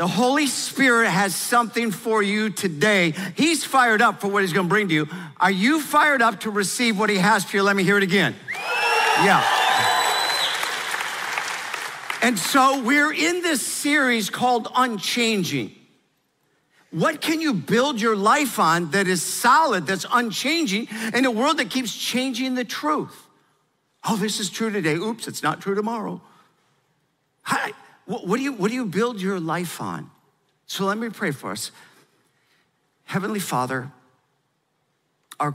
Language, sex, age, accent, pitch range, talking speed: English, male, 50-69, American, 150-235 Hz, 155 wpm